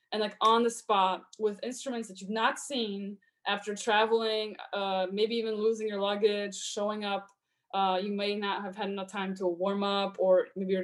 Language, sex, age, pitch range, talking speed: English, female, 20-39, 190-225 Hz, 195 wpm